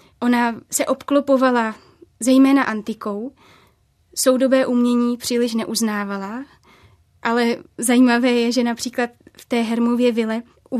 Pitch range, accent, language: 225-250 Hz, native, Czech